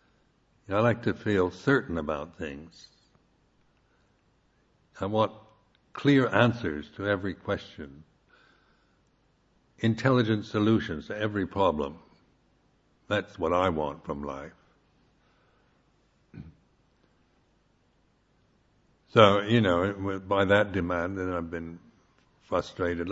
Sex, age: male, 60-79